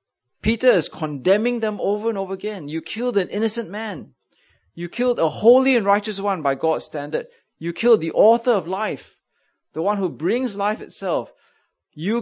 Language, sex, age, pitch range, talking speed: English, male, 30-49, 150-220 Hz, 175 wpm